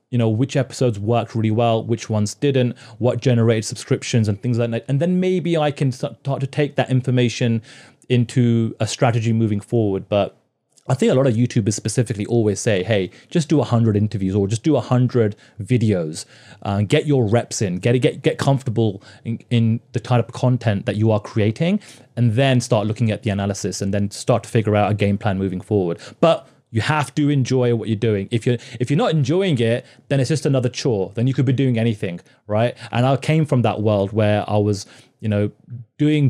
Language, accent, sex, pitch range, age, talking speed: English, British, male, 110-130 Hz, 30-49, 210 wpm